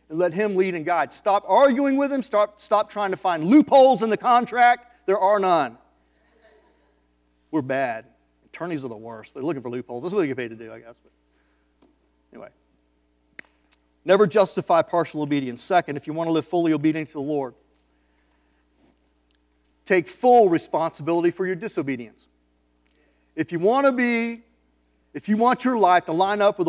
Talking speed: 175 wpm